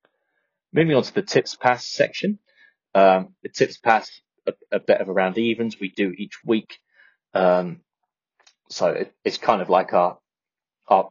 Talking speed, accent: 160 wpm, British